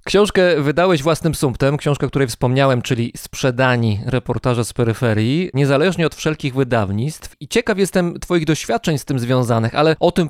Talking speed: 155 wpm